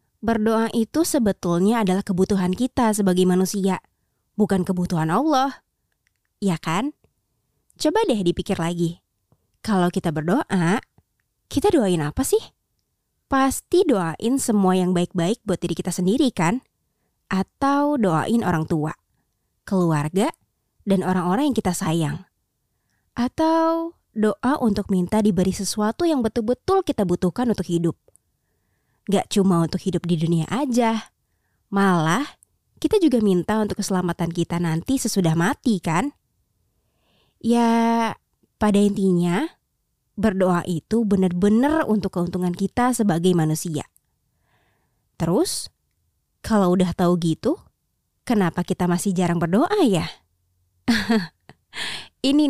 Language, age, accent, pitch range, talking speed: Indonesian, 20-39, native, 175-235 Hz, 110 wpm